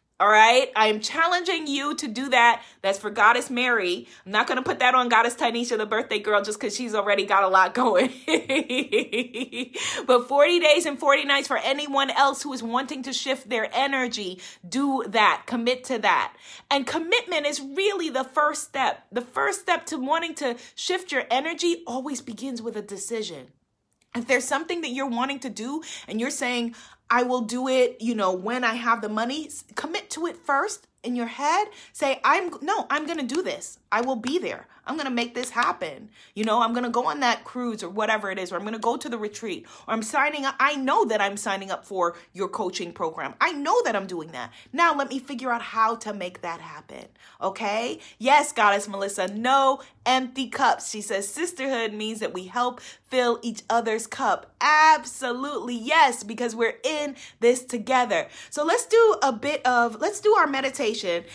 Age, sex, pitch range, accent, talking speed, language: 30-49, female, 220-280 Hz, American, 205 wpm, English